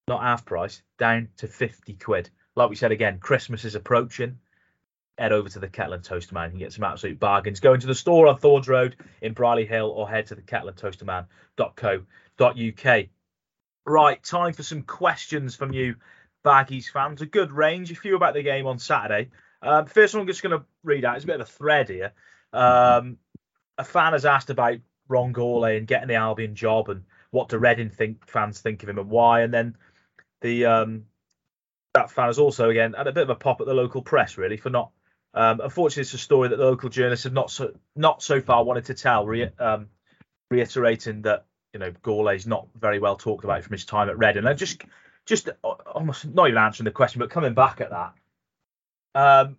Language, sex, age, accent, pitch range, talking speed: English, male, 30-49, British, 105-130 Hz, 205 wpm